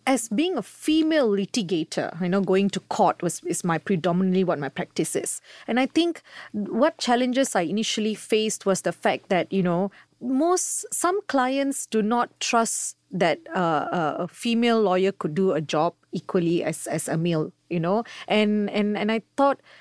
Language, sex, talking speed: English, female, 180 wpm